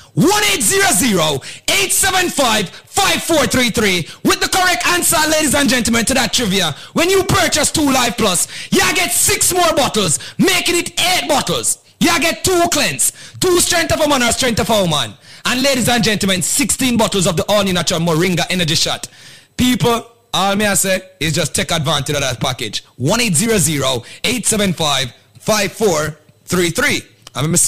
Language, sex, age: English, male, 30-49